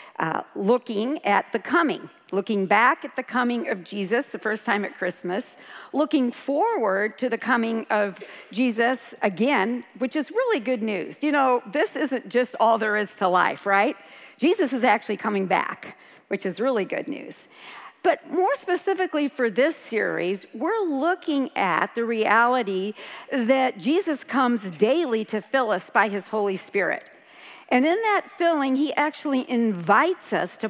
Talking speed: 160 wpm